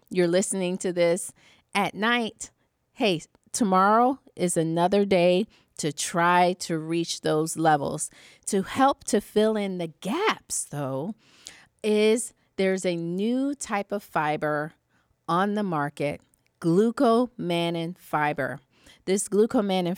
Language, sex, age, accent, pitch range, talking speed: English, female, 40-59, American, 165-205 Hz, 115 wpm